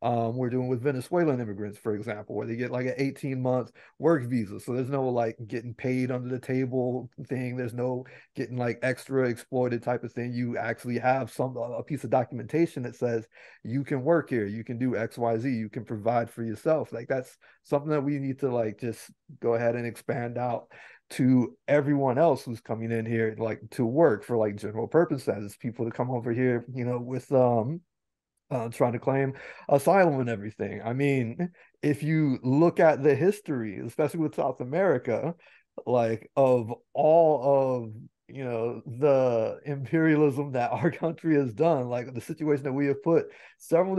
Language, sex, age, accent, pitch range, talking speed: English, male, 30-49, American, 120-150 Hz, 185 wpm